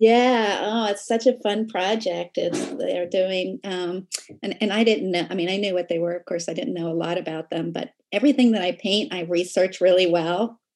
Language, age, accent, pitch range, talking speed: English, 40-59, American, 175-205 Hz, 235 wpm